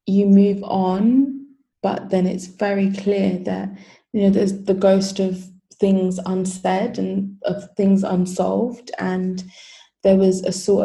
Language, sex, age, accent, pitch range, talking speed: English, female, 20-39, British, 185-200 Hz, 145 wpm